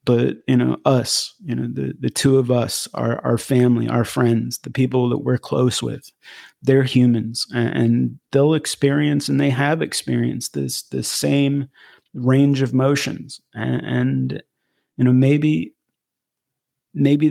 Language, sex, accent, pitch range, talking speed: English, male, American, 120-135 Hz, 155 wpm